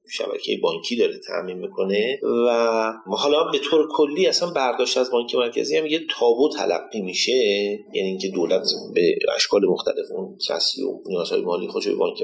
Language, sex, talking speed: Persian, male, 160 wpm